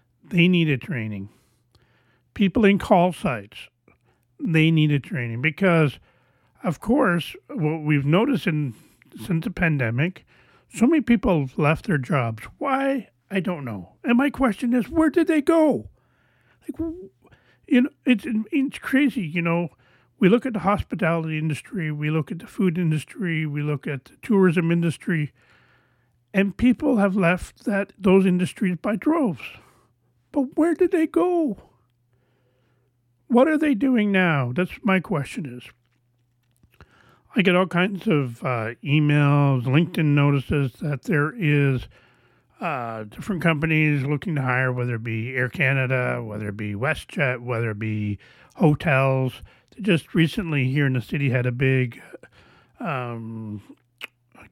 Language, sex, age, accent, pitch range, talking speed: English, male, 40-59, American, 125-195 Hz, 145 wpm